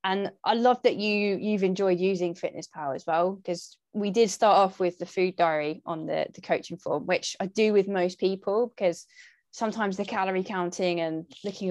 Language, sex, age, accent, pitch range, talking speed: English, female, 20-39, British, 175-200 Hz, 200 wpm